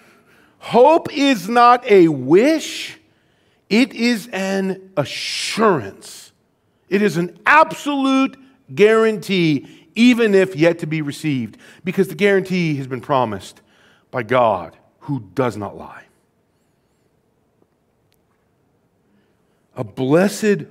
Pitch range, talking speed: 160-220 Hz, 100 wpm